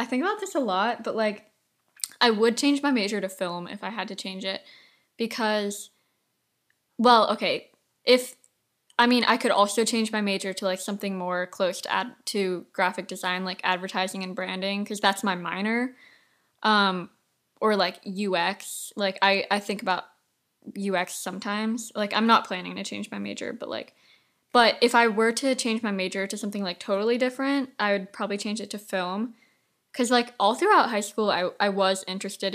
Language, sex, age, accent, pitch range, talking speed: English, female, 10-29, American, 190-225 Hz, 190 wpm